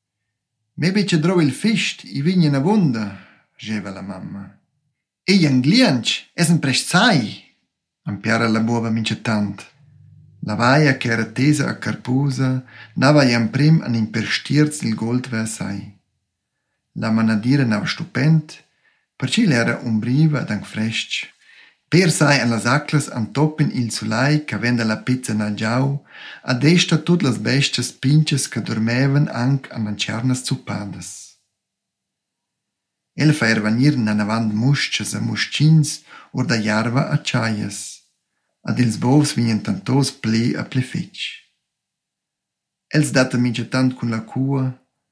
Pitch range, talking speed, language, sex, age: 110-140 Hz, 130 wpm, English, male, 50-69